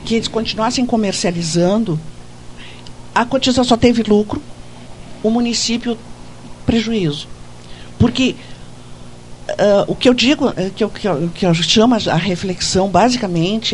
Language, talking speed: Portuguese, 110 wpm